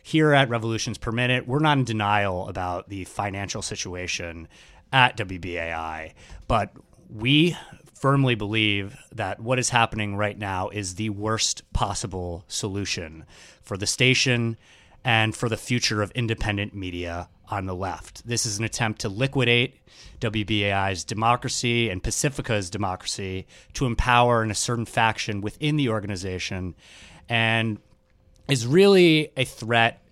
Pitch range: 100-125 Hz